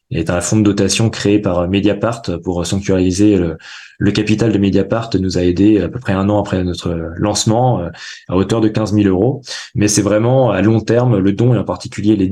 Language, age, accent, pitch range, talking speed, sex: French, 20-39, French, 90-110 Hz, 215 wpm, male